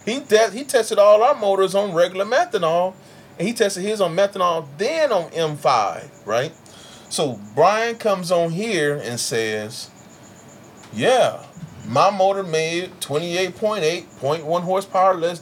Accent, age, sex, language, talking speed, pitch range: American, 30-49, male, English, 150 wpm, 145-195 Hz